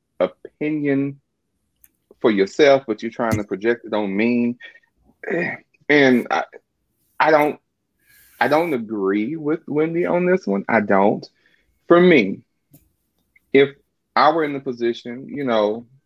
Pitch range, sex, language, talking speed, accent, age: 110-155 Hz, male, English, 130 wpm, American, 30-49